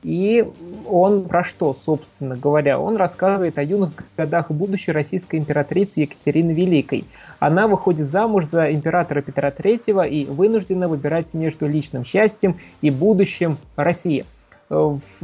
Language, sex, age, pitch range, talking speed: Russian, male, 20-39, 145-185 Hz, 130 wpm